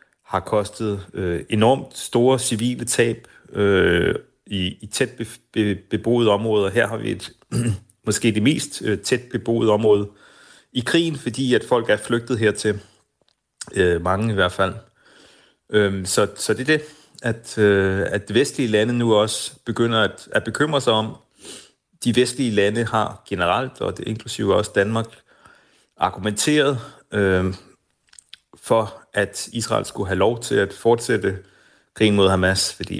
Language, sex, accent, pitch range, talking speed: Danish, male, native, 95-115 Hz, 150 wpm